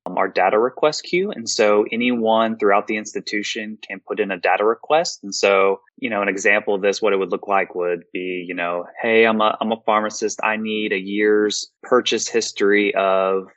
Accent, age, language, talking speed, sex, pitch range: American, 20-39, English, 200 wpm, male, 95-115 Hz